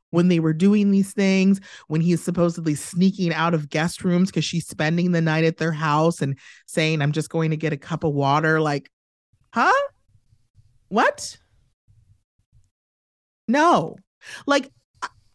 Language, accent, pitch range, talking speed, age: English, American, 155-205 Hz, 150 wpm, 30-49